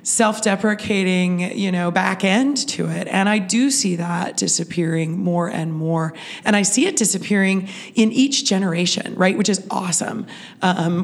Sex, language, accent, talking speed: female, English, American, 160 wpm